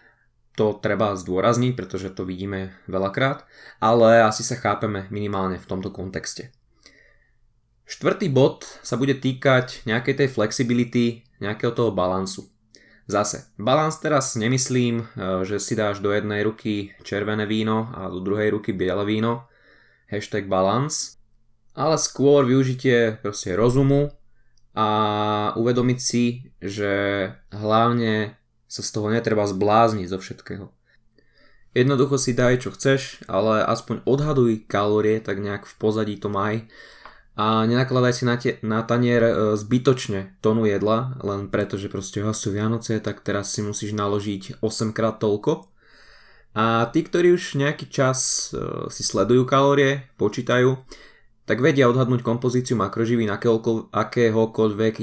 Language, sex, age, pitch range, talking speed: Slovak, male, 20-39, 105-125 Hz, 130 wpm